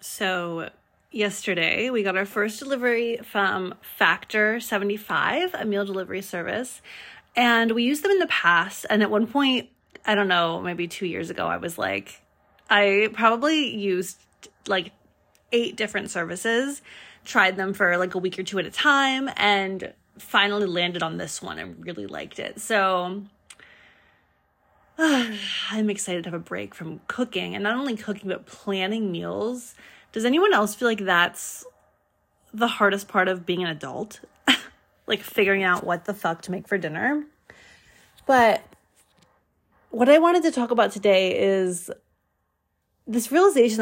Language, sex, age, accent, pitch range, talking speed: English, female, 20-39, American, 185-235 Hz, 155 wpm